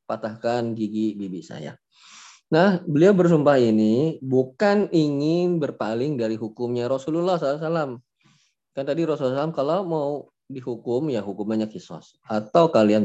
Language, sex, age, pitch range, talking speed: Indonesian, male, 20-39, 110-155 Hz, 135 wpm